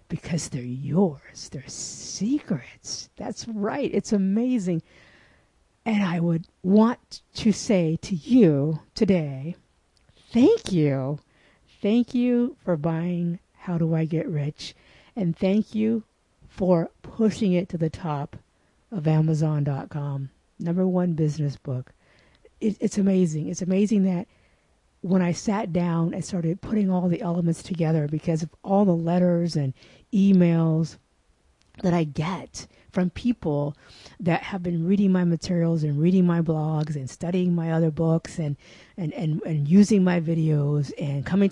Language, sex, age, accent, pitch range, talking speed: English, female, 50-69, American, 160-205 Hz, 140 wpm